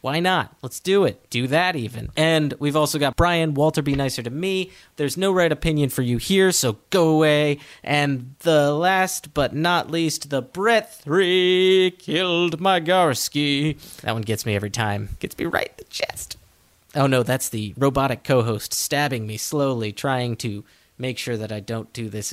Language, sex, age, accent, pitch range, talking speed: English, male, 30-49, American, 115-155 Hz, 190 wpm